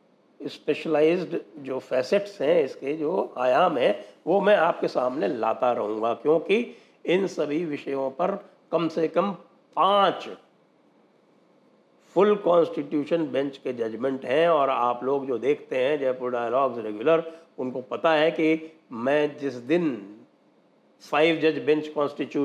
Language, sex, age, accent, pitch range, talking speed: English, male, 60-79, Indian, 130-170 Hz, 110 wpm